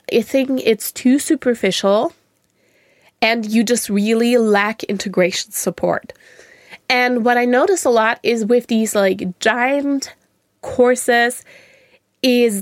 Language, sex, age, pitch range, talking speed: English, female, 20-39, 205-255 Hz, 120 wpm